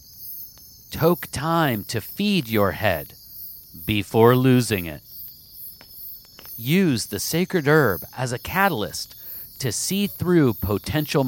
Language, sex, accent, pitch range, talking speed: English, male, American, 100-145 Hz, 105 wpm